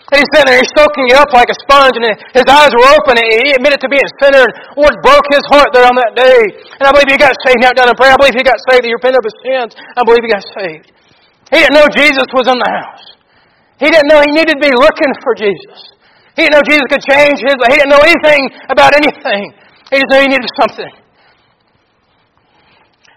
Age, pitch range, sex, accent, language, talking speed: 40-59, 215-270 Hz, male, American, English, 250 wpm